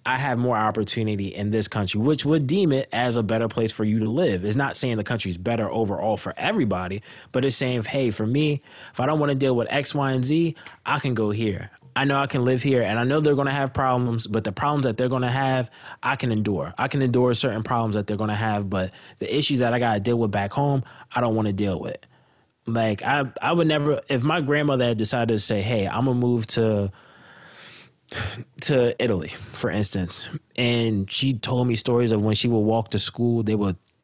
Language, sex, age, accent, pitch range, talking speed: English, male, 20-39, American, 110-130 Hz, 240 wpm